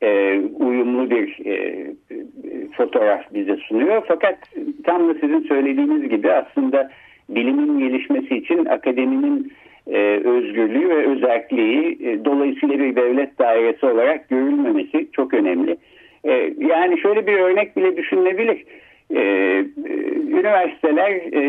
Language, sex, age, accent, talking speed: Turkish, male, 60-79, native, 95 wpm